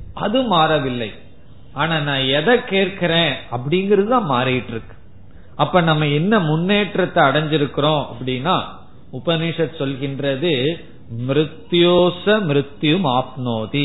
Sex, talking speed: male, 60 wpm